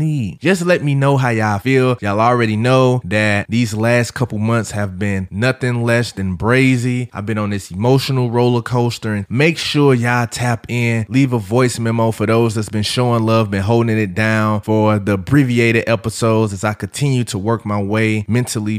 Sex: male